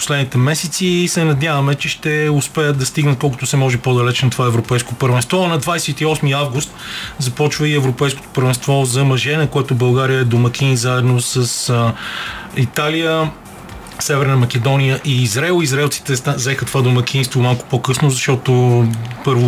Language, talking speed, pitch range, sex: Bulgarian, 145 wpm, 120-140 Hz, male